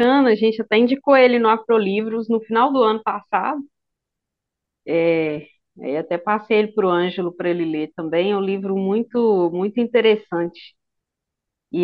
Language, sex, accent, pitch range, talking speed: Portuguese, female, Brazilian, 195-240 Hz, 150 wpm